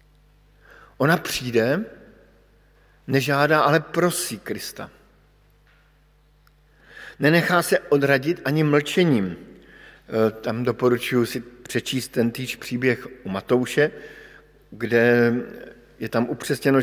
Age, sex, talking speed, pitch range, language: 50-69, male, 85 wpm, 120-150 Hz, Slovak